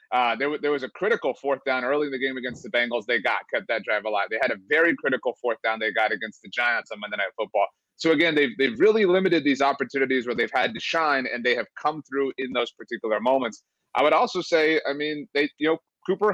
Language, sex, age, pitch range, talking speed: English, male, 30-49, 120-150 Hz, 255 wpm